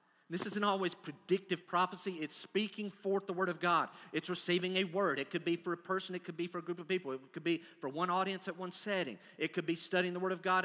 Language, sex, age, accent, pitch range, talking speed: English, male, 50-69, American, 175-210 Hz, 265 wpm